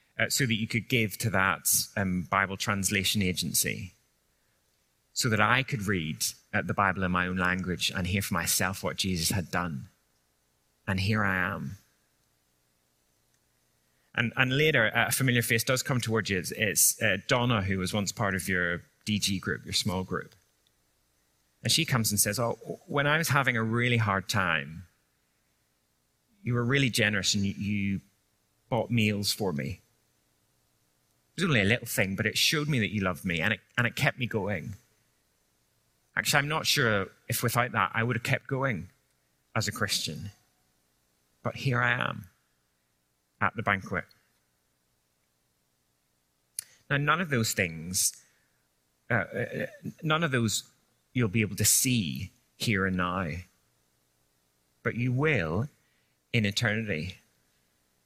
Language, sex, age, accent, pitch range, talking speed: English, male, 30-49, British, 80-120 Hz, 155 wpm